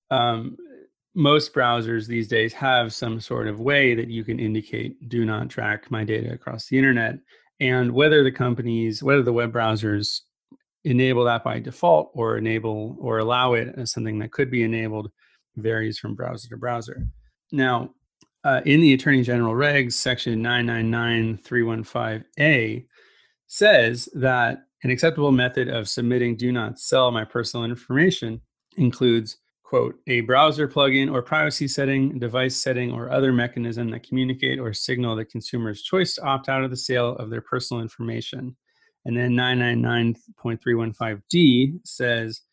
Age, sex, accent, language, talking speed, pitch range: 30-49, male, American, English, 155 wpm, 115-130 Hz